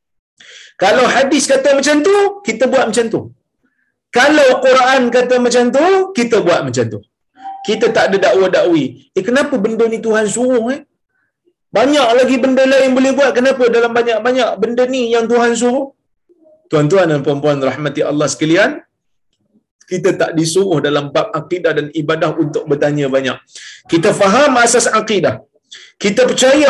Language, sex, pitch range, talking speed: Malayalam, male, 165-255 Hz, 150 wpm